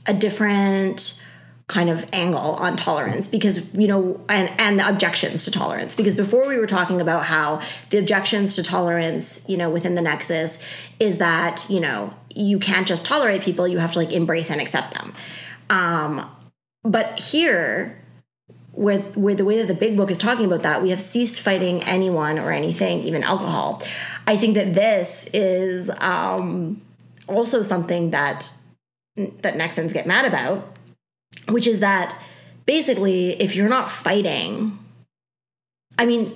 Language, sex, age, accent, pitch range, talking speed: English, female, 20-39, American, 170-205 Hz, 160 wpm